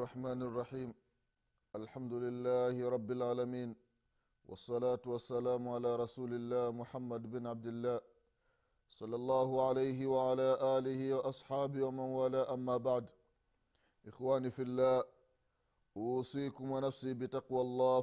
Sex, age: male, 30-49